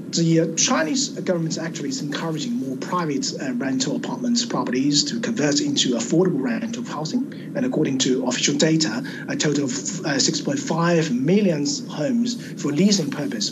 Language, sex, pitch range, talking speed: English, male, 160-250 Hz, 155 wpm